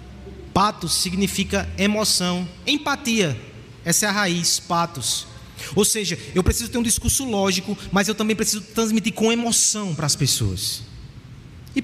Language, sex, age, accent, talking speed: Portuguese, male, 20-39, Brazilian, 140 wpm